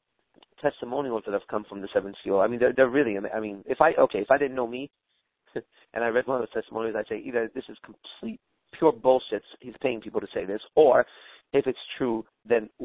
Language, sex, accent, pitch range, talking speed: English, male, American, 110-140 Hz, 230 wpm